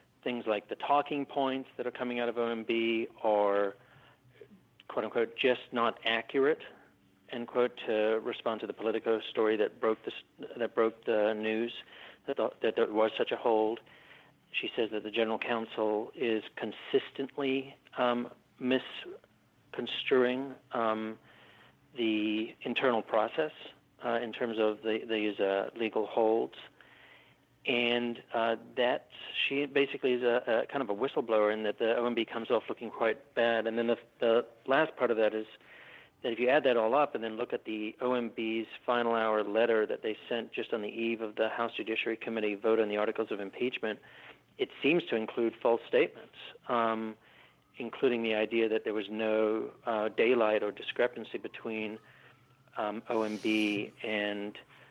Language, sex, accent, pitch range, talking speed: English, male, American, 110-120 Hz, 165 wpm